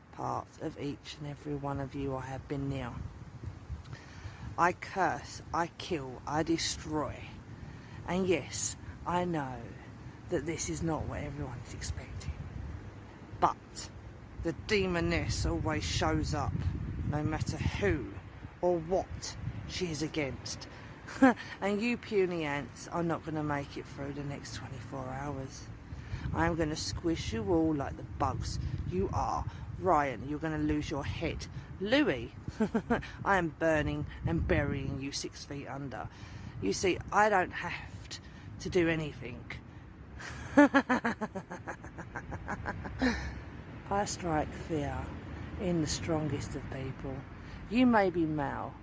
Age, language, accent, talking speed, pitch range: 40-59, English, British, 135 wpm, 110-160 Hz